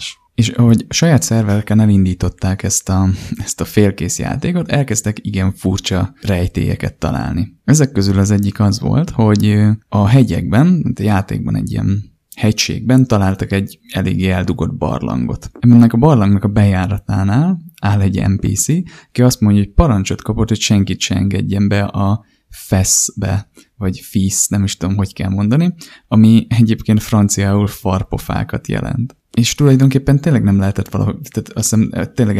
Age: 20-39